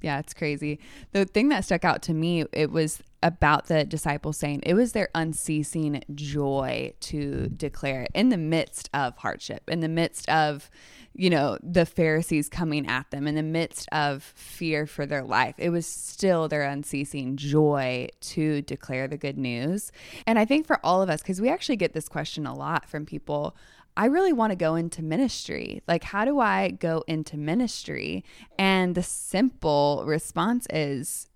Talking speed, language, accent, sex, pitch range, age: 180 wpm, English, American, female, 150-205 Hz, 20-39